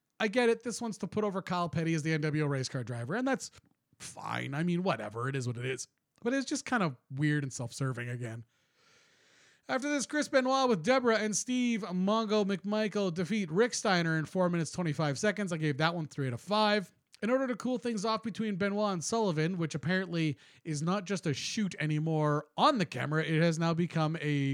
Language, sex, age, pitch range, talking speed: English, male, 30-49, 140-205 Hz, 215 wpm